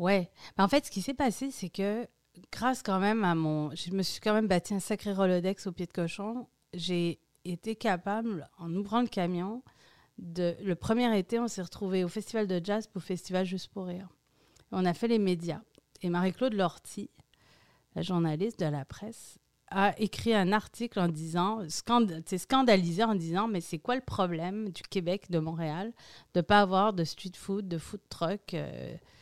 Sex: female